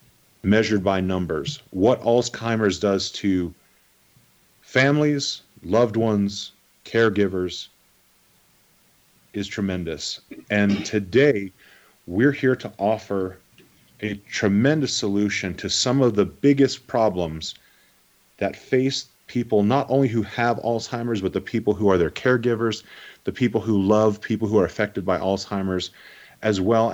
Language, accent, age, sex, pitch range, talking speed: English, American, 30-49, male, 95-115 Hz, 120 wpm